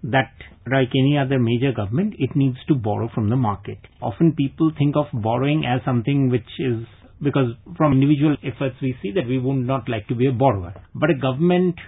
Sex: male